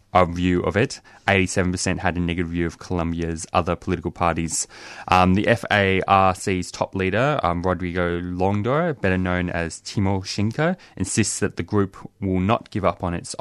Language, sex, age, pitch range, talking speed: English, male, 20-39, 90-105 Hz, 155 wpm